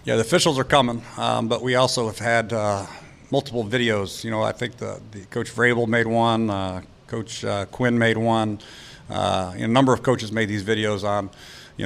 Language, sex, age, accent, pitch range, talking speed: English, male, 50-69, American, 105-120 Hz, 205 wpm